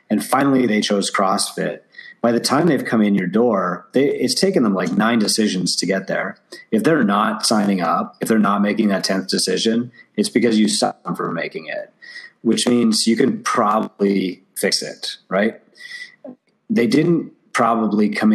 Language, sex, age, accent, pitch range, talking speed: English, male, 30-49, American, 100-145 Hz, 180 wpm